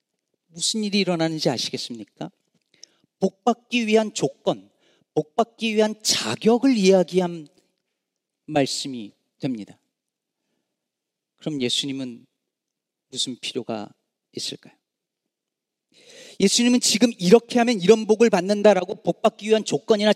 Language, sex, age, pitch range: Korean, male, 40-59, 175-240 Hz